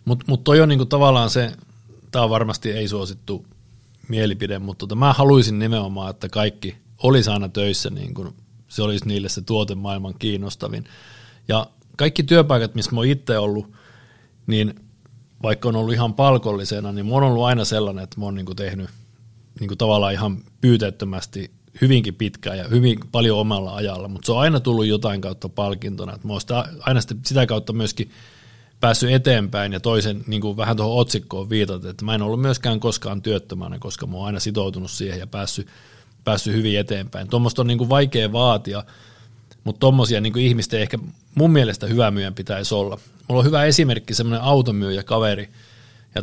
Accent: native